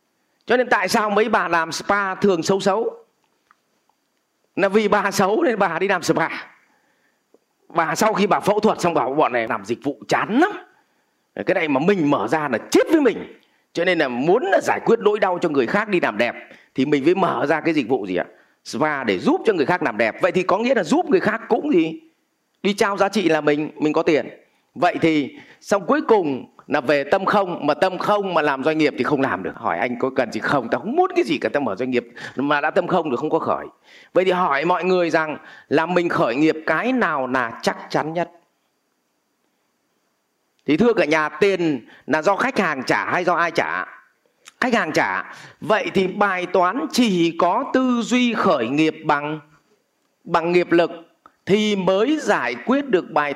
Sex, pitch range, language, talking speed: male, 155-225 Hz, Vietnamese, 220 wpm